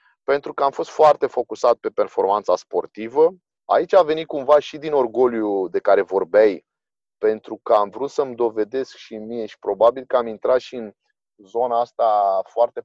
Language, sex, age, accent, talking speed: Romanian, male, 30-49, native, 175 wpm